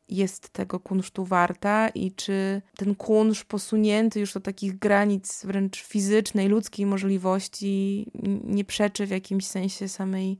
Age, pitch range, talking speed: 20-39, 185-210 Hz, 135 wpm